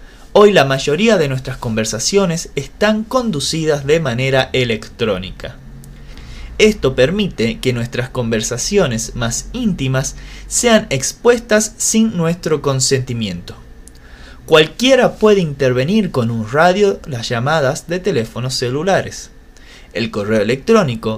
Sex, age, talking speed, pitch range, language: male, 20-39, 105 wpm, 115-180 Hz, Spanish